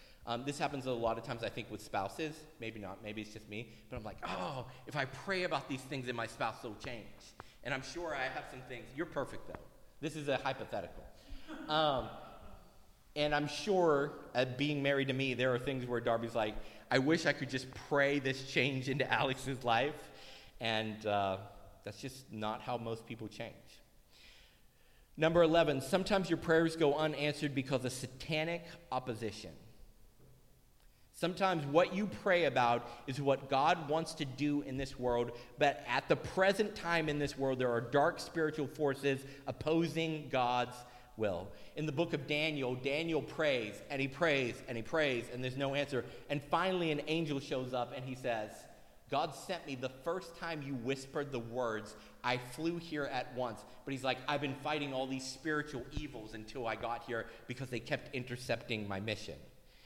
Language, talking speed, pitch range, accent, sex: English, 185 wpm, 120-150 Hz, American, male